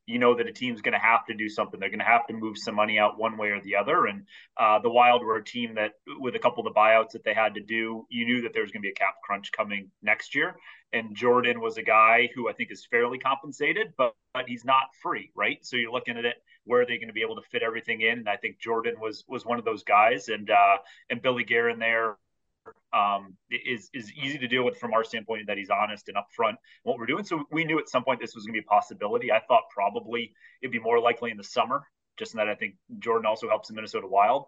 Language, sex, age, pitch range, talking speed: English, male, 30-49, 110-130 Hz, 275 wpm